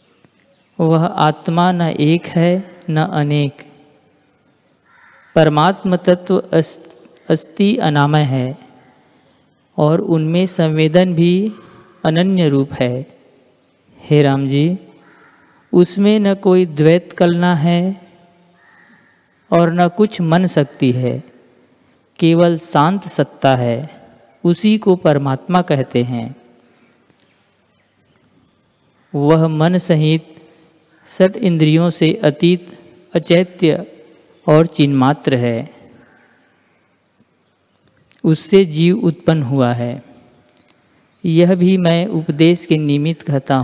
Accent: native